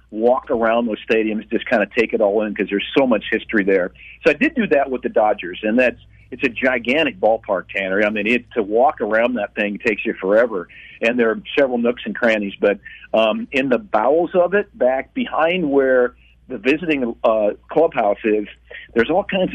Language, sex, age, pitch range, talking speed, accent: English, male, 50-69, 115-145 Hz, 205 wpm, American